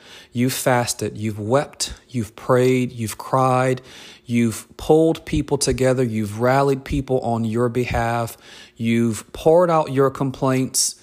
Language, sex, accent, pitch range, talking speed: English, male, American, 115-135 Hz, 130 wpm